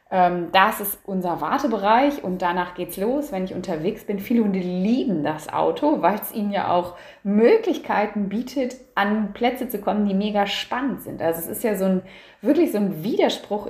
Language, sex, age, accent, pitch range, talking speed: German, female, 20-39, German, 185-235 Hz, 185 wpm